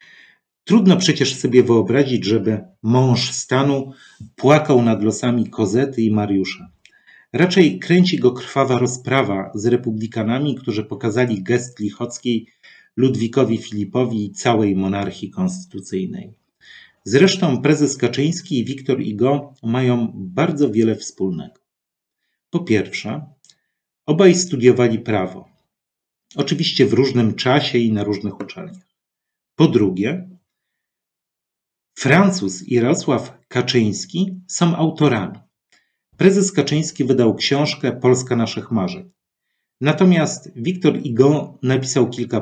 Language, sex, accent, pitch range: Polish, male, native, 115-155 Hz